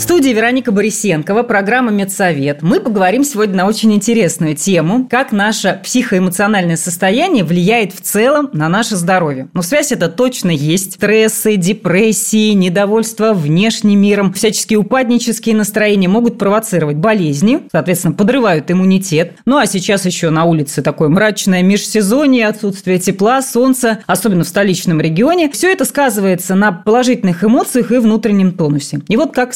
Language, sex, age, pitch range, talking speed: Russian, female, 20-39, 180-230 Hz, 140 wpm